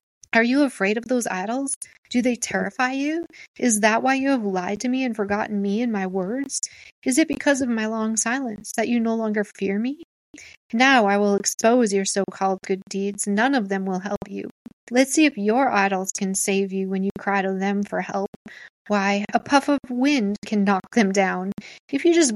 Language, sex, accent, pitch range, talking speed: English, female, American, 200-240 Hz, 210 wpm